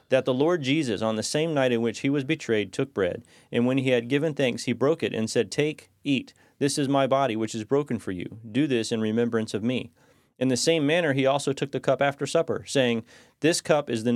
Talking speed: 250 wpm